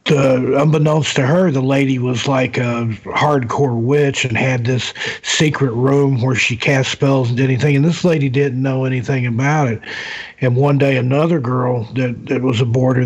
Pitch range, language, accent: 125-140 Hz, English, American